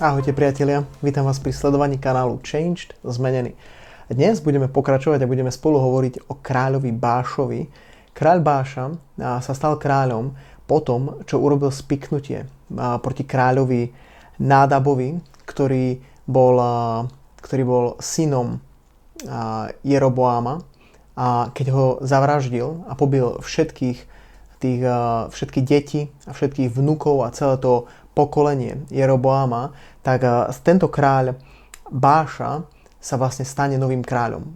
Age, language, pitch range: 30-49, Slovak, 125-145 Hz